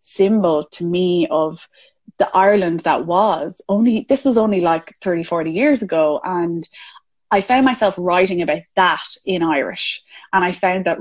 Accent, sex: Irish, female